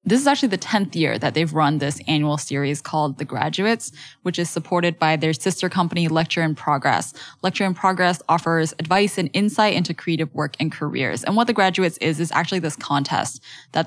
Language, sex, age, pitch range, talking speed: English, female, 10-29, 155-185 Hz, 205 wpm